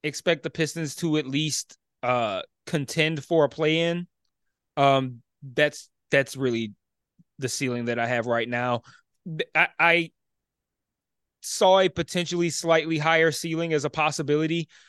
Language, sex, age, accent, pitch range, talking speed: English, male, 20-39, American, 135-175 Hz, 135 wpm